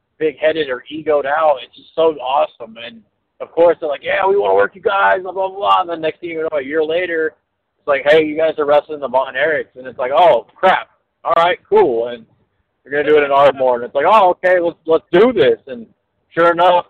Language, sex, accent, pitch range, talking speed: English, male, American, 125-160 Hz, 240 wpm